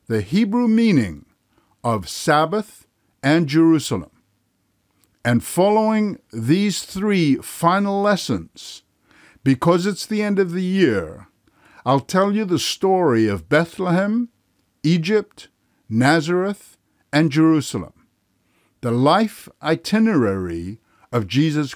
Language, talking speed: English, 100 wpm